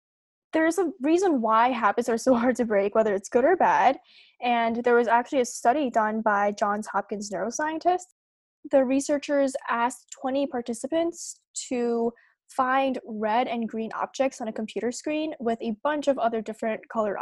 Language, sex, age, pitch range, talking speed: English, female, 10-29, 220-265 Hz, 170 wpm